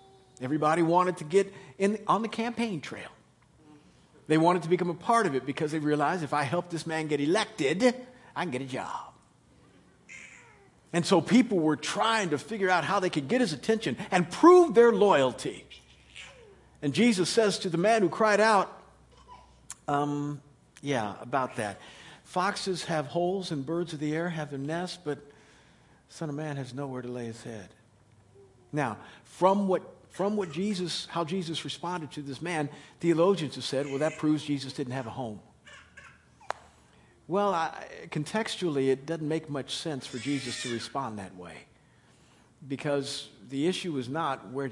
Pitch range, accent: 130-175 Hz, American